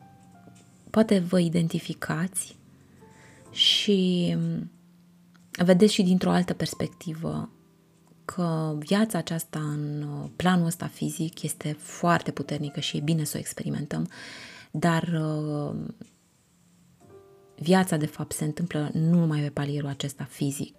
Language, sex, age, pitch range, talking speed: Romanian, female, 20-39, 150-190 Hz, 105 wpm